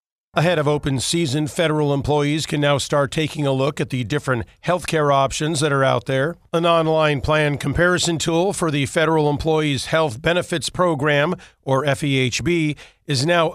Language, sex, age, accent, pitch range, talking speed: English, male, 50-69, American, 145-170 Hz, 170 wpm